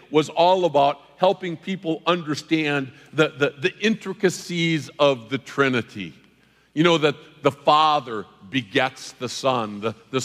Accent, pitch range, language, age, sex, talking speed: American, 130-165 Hz, English, 50-69, male, 135 wpm